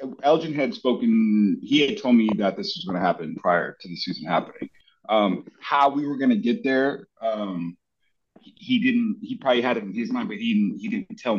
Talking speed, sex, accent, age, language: 220 wpm, male, American, 30-49, English